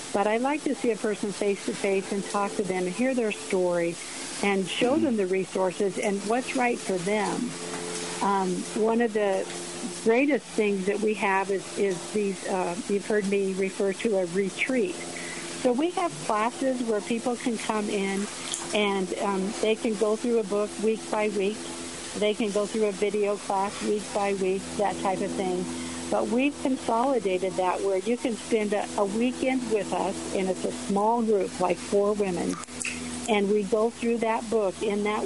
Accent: American